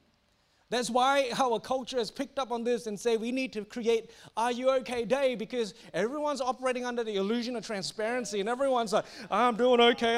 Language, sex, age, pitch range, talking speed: English, male, 30-49, 225-300 Hz, 195 wpm